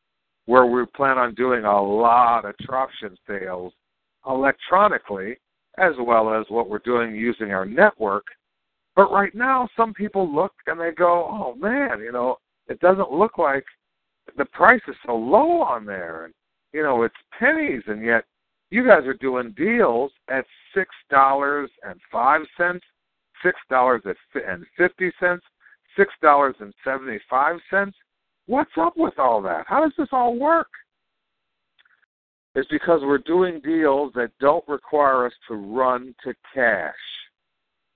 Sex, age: male, 60-79